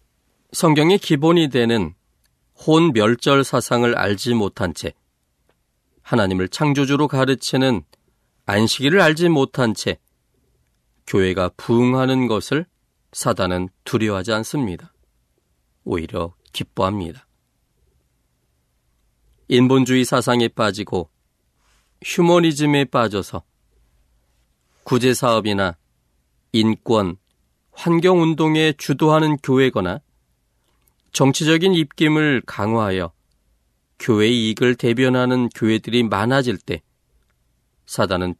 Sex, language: male, Korean